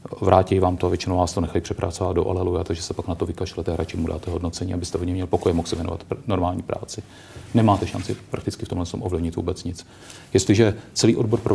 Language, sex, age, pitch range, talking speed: Czech, male, 40-59, 90-105 Hz, 230 wpm